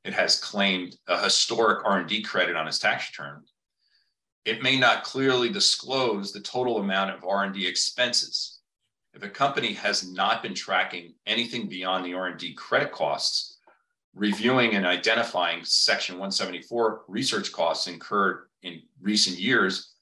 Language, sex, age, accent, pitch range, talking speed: English, male, 40-59, American, 95-120 Hz, 140 wpm